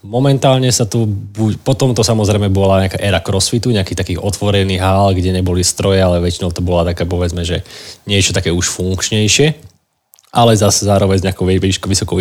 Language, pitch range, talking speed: Slovak, 95-105 Hz, 165 wpm